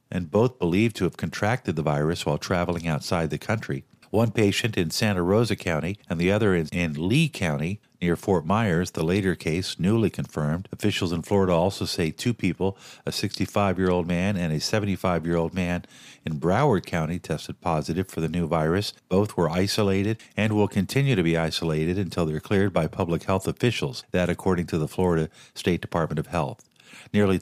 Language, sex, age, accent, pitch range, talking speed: English, male, 50-69, American, 85-110 Hz, 180 wpm